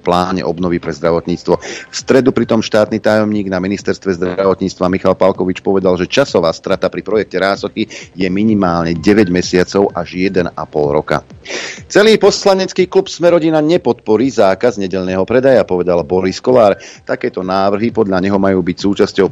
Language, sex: Slovak, male